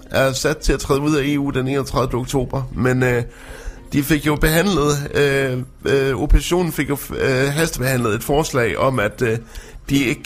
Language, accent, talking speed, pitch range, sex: Danish, native, 185 wpm, 120-145 Hz, male